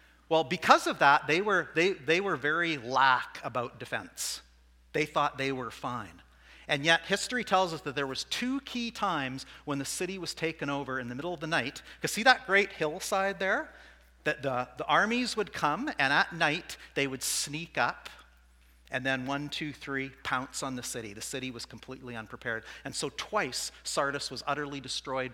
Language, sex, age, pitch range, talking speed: English, male, 40-59, 115-155 Hz, 190 wpm